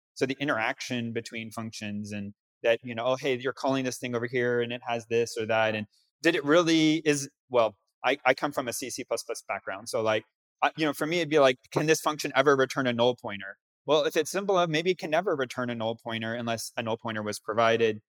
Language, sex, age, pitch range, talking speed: English, male, 30-49, 115-155 Hz, 240 wpm